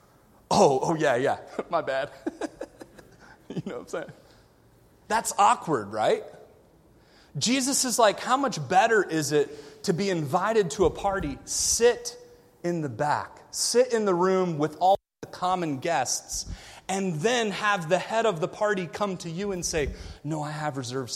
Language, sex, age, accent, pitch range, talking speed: English, male, 30-49, American, 145-215 Hz, 165 wpm